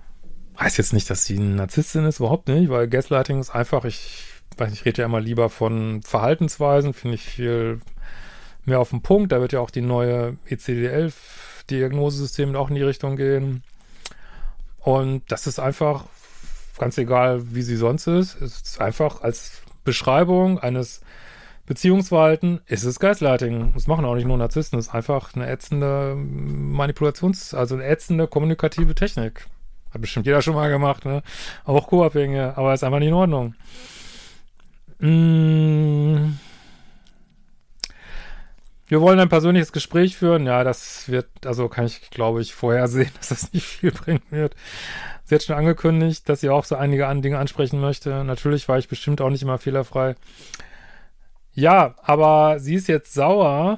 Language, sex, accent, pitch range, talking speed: German, male, German, 125-155 Hz, 160 wpm